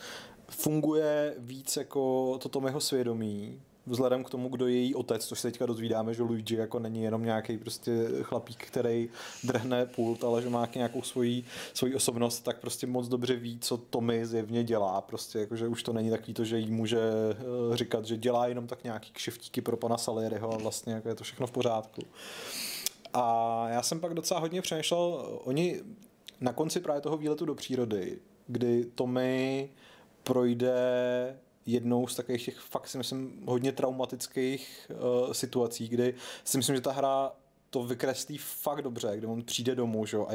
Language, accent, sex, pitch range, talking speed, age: Czech, native, male, 115-130 Hz, 175 wpm, 30-49